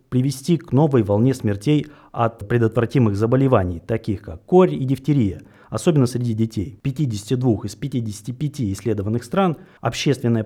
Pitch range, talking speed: 110-145 Hz, 125 wpm